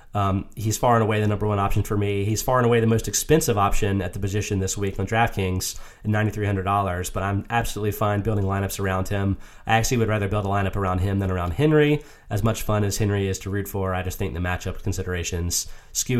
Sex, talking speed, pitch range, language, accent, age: male, 235 wpm, 105-125 Hz, English, American, 30-49